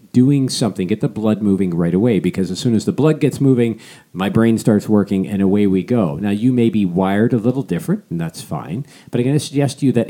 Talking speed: 255 wpm